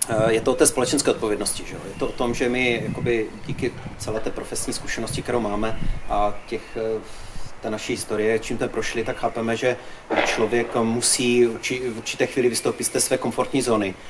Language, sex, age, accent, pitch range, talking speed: Czech, male, 30-49, native, 110-120 Hz, 185 wpm